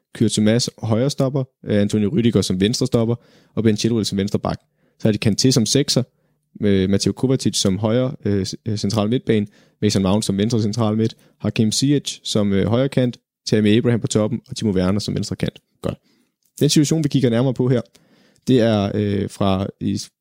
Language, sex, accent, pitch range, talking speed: Danish, male, native, 105-125 Hz, 180 wpm